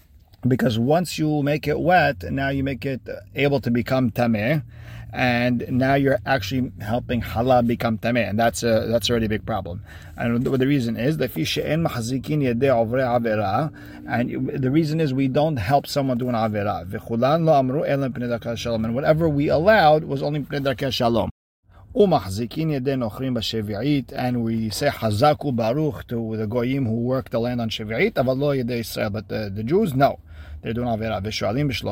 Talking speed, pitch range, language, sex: 135 wpm, 110-140 Hz, English, male